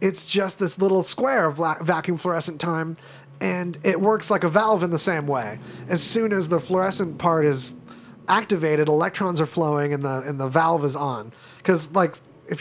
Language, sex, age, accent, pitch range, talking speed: English, male, 30-49, American, 155-190 Hz, 190 wpm